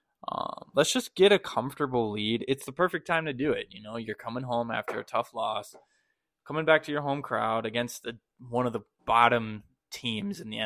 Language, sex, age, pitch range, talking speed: English, male, 20-39, 110-130 Hz, 215 wpm